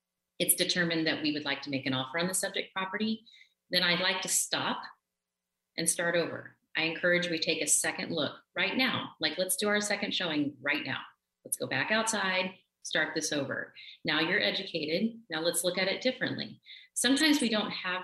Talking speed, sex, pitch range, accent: 195 wpm, female, 135-185 Hz, American